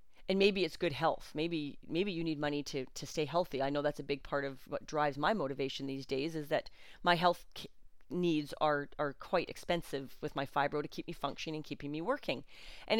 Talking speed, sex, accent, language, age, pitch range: 220 wpm, female, American, English, 30-49, 145-190 Hz